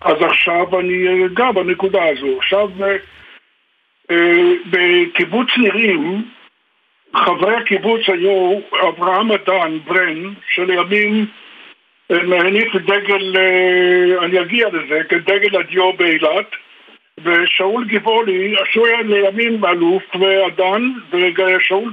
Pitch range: 185-220 Hz